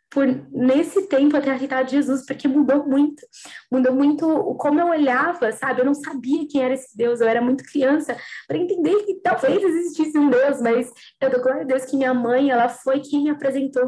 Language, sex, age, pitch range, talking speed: Portuguese, female, 10-29, 235-280 Hz, 210 wpm